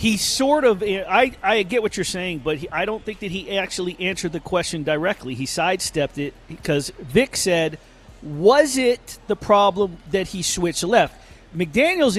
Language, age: English, 40-59